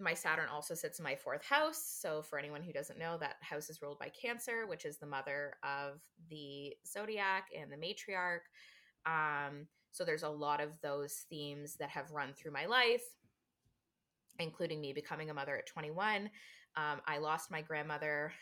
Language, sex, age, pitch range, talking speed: English, female, 20-39, 145-175 Hz, 180 wpm